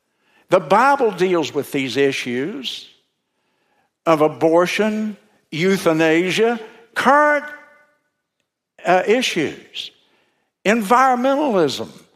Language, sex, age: English, male, 60-79